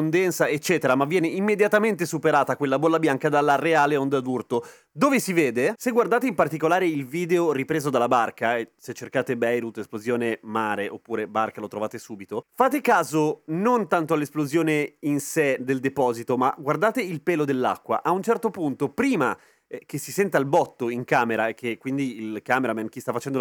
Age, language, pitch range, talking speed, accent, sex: 30-49, Italian, 135-195 Hz, 175 wpm, native, male